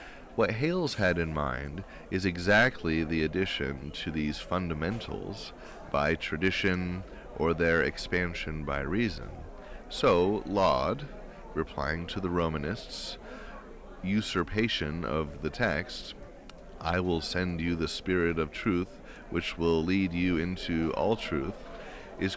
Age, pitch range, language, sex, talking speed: 30-49, 80-95 Hz, English, male, 120 wpm